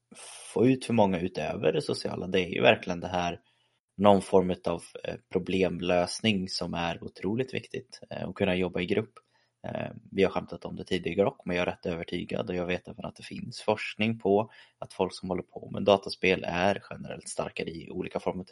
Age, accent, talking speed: 20-39, native, 195 wpm